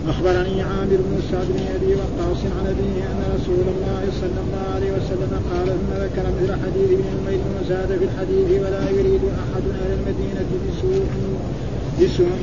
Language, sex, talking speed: Arabic, male, 160 wpm